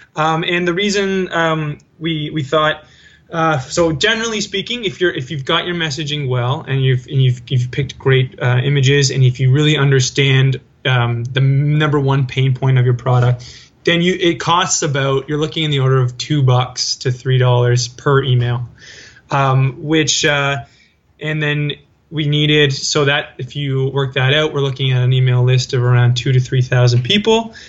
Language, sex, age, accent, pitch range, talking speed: English, male, 20-39, American, 125-155 Hz, 190 wpm